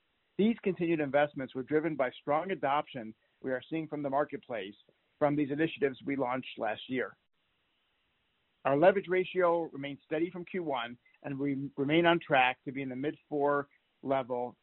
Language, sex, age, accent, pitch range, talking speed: English, male, 50-69, American, 130-155 Hz, 160 wpm